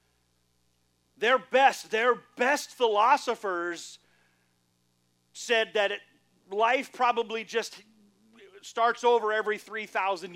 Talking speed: 85 wpm